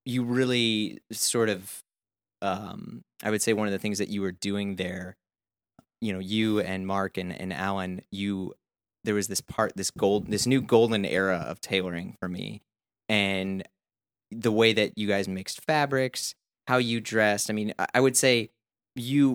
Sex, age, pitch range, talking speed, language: male, 20-39, 100-115 Hz, 175 wpm, English